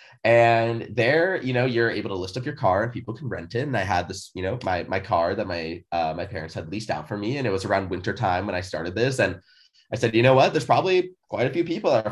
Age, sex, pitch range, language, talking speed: 20-39, male, 95-125 Hz, English, 290 wpm